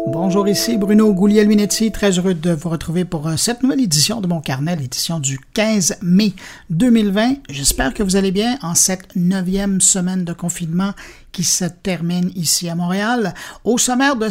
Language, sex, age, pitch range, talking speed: French, male, 60-79, 175-225 Hz, 175 wpm